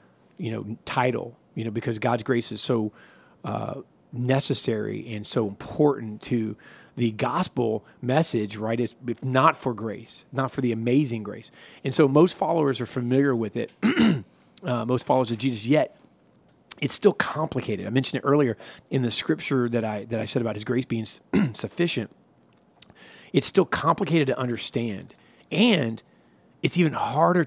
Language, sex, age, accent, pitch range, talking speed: English, male, 40-59, American, 115-135 Hz, 155 wpm